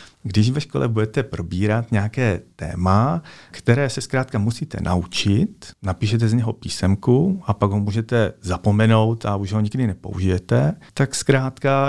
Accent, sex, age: native, male, 40-59